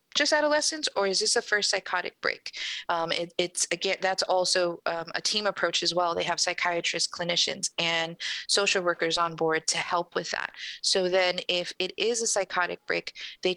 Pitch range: 165-185 Hz